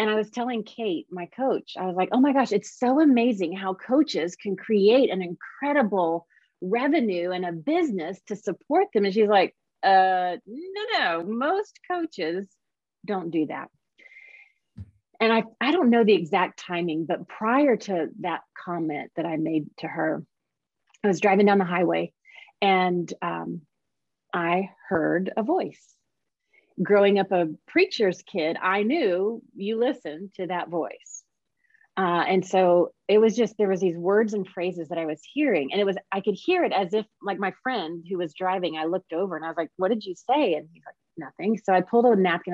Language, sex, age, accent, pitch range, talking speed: English, female, 30-49, American, 175-235 Hz, 190 wpm